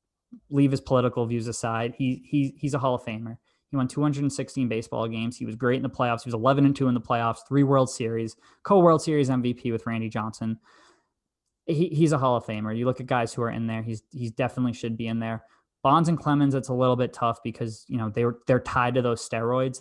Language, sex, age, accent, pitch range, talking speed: English, male, 20-39, American, 115-130 Hz, 240 wpm